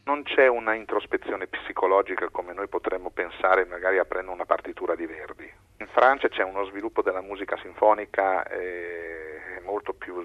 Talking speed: 145 wpm